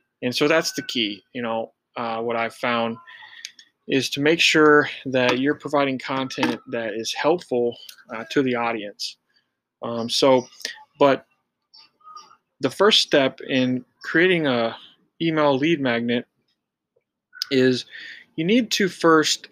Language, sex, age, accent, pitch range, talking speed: English, male, 20-39, American, 125-150 Hz, 130 wpm